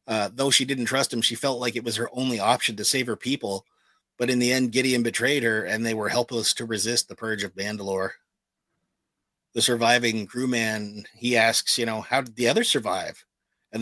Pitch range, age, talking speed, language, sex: 110-125 Hz, 30-49, 210 wpm, English, male